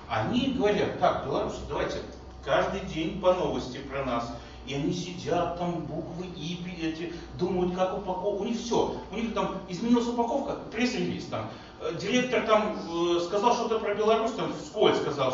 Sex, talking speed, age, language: male, 155 wpm, 30-49, Russian